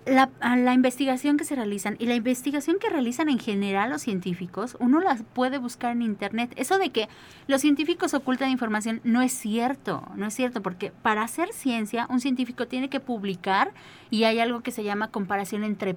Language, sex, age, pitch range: Spanish, female, 30-49, 185-245 Hz